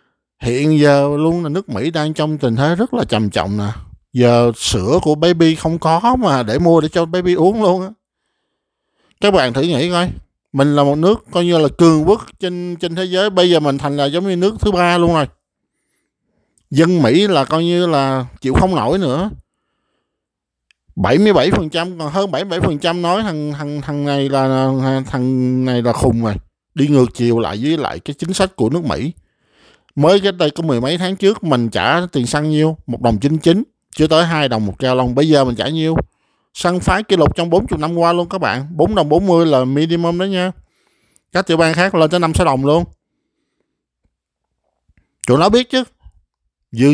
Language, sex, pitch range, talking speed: Vietnamese, male, 135-175 Hz, 205 wpm